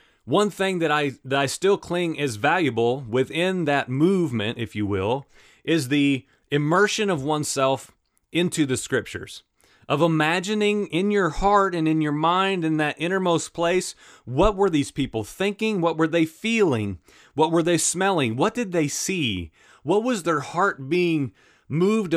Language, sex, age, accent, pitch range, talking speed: English, male, 30-49, American, 140-190 Hz, 160 wpm